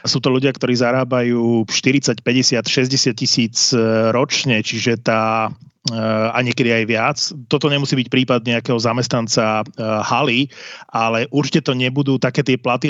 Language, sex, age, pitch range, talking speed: Slovak, male, 30-49, 120-140 Hz, 145 wpm